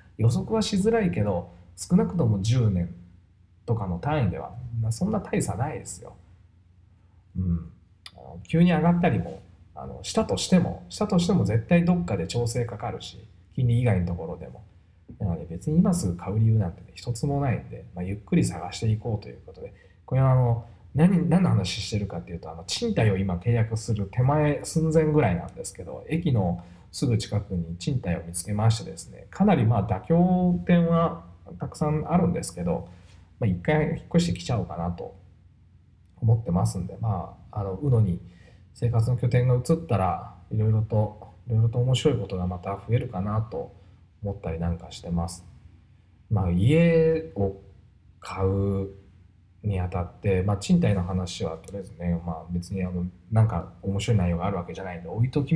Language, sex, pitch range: Japanese, male, 90-125 Hz